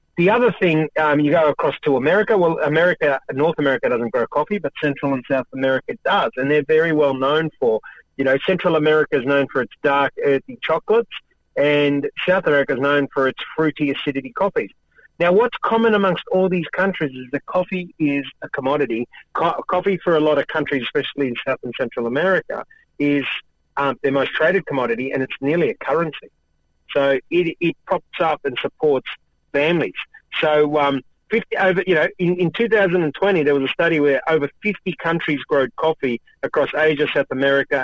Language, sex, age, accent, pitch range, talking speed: English, male, 30-49, Australian, 135-180 Hz, 185 wpm